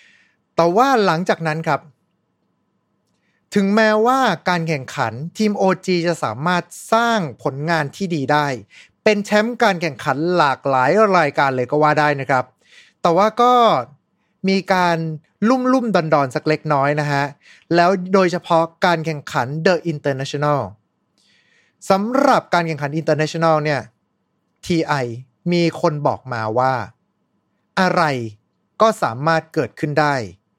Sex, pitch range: male, 140-200 Hz